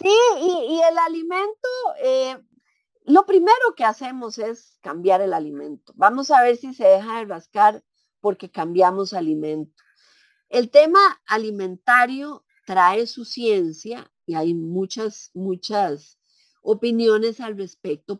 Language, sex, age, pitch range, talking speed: Spanish, female, 40-59, 195-270 Hz, 125 wpm